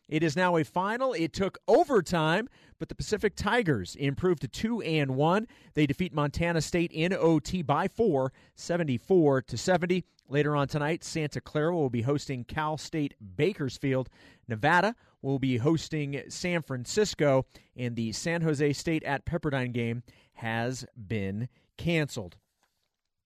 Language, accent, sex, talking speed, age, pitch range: English, American, male, 140 wpm, 40-59, 145-195 Hz